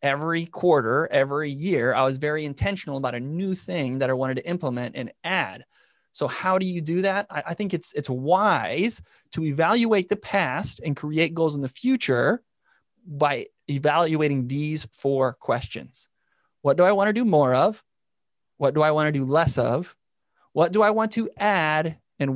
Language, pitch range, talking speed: English, 135-180 Hz, 180 wpm